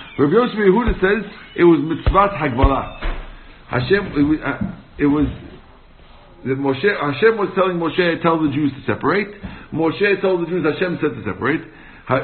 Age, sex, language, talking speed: 60-79, male, English, 160 wpm